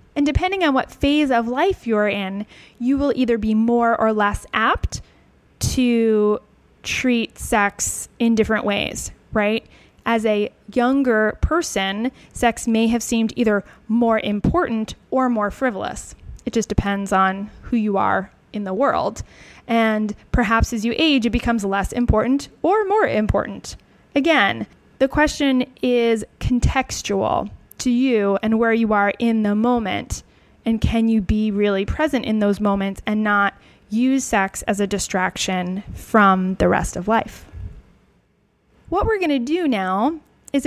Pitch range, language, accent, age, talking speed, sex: 210-260 Hz, English, American, 20-39, 150 wpm, female